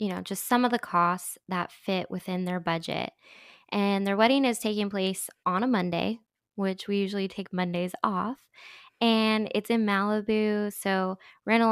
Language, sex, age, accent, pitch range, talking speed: English, female, 20-39, American, 180-215 Hz, 170 wpm